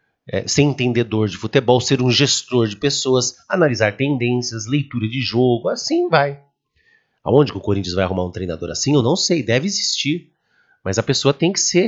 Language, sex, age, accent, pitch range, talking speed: English, male, 40-59, Brazilian, 110-170 Hz, 180 wpm